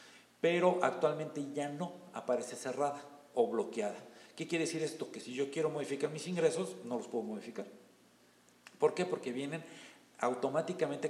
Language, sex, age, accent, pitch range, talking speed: English, male, 50-69, Mexican, 130-170 Hz, 150 wpm